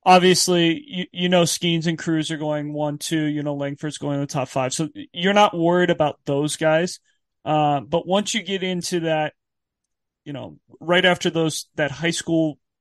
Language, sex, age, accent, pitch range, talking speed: English, male, 30-49, American, 150-175 Hz, 190 wpm